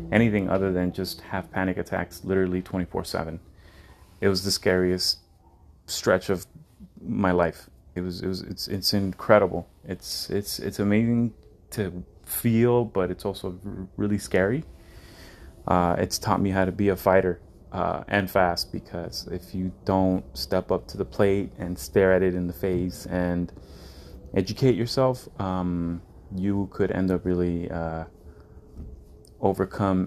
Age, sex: 30-49, male